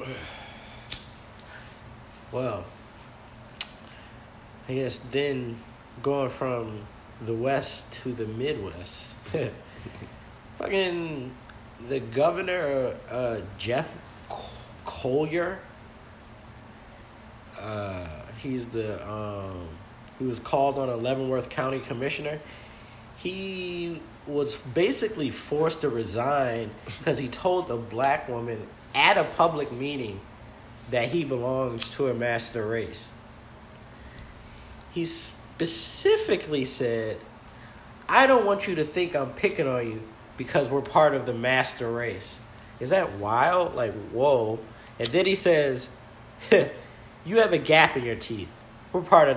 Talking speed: 110 wpm